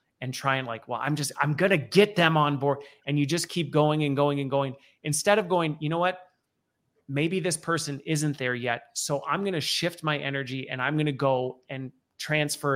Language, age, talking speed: English, 30-49, 230 wpm